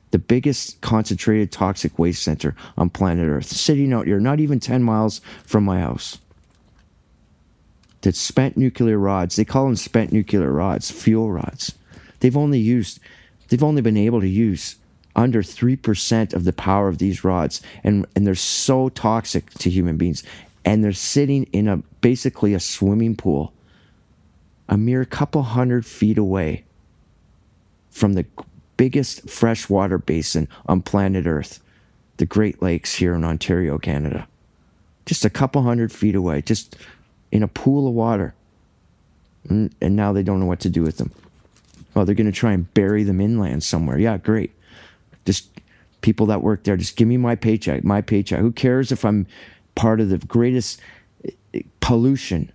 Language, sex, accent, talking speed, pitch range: English, male, American, 160 wpm, 90-115 Hz